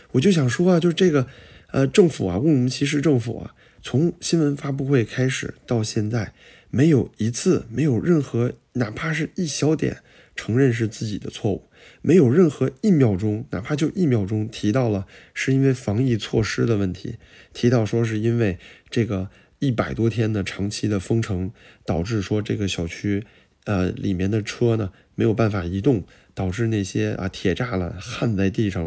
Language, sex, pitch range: Chinese, male, 100-140 Hz